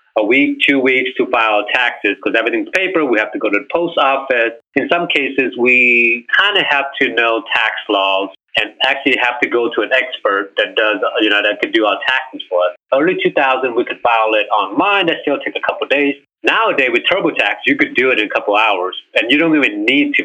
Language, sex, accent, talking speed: English, male, American, 235 wpm